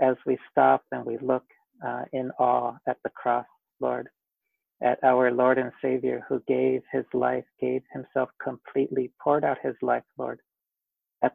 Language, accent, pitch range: English, American, 130-155 Hz